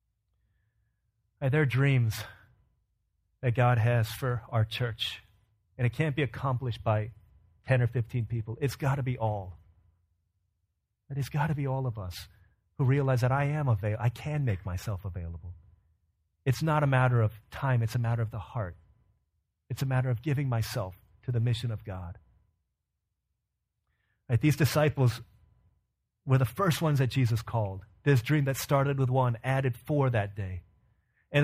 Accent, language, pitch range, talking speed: American, English, 105-155 Hz, 160 wpm